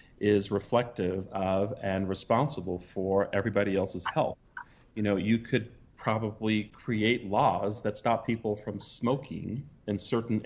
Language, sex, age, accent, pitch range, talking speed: English, male, 40-59, American, 100-120 Hz, 130 wpm